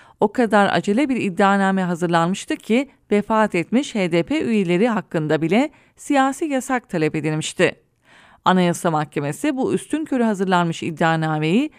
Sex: female